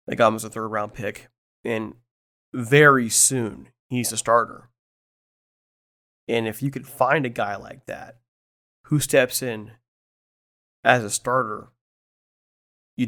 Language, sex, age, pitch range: English, male, 30-49, 110-130 Hz